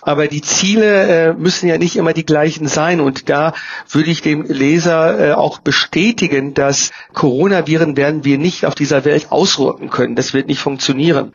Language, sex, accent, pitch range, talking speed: German, male, German, 145-175 Hz, 170 wpm